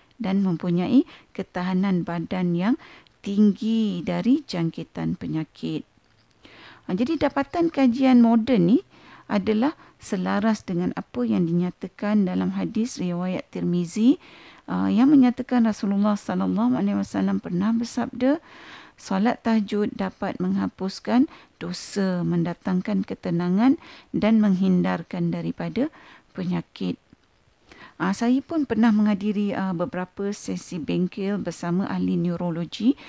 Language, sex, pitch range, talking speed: Malay, female, 180-245 Hz, 95 wpm